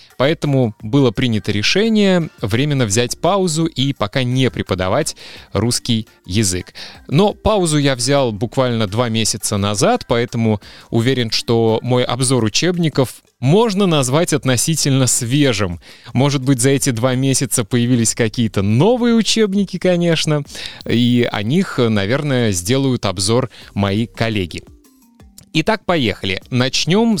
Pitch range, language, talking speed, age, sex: 105-145 Hz, Russian, 115 wpm, 20-39, male